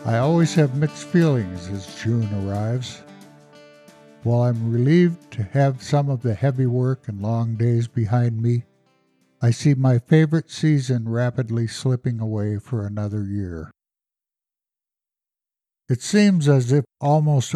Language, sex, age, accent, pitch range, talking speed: English, male, 60-79, American, 110-135 Hz, 135 wpm